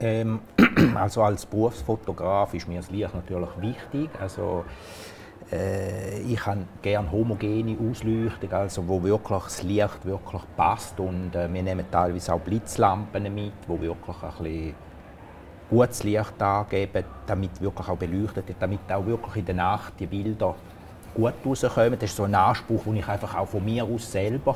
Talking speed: 160 wpm